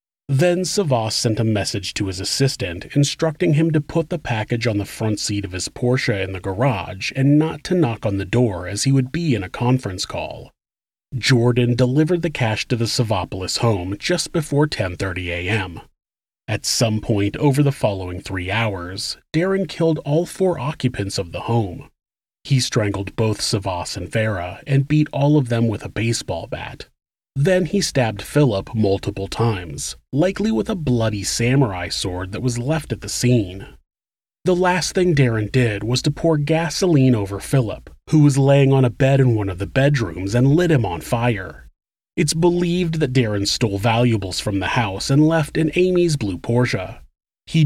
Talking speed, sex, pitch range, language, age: 180 wpm, male, 105-150 Hz, English, 30-49